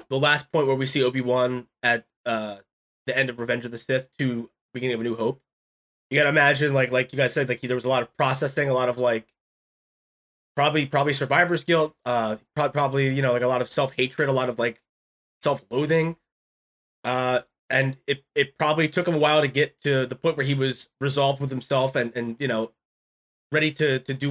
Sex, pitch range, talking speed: male, 125-145 Hz, 220 wpm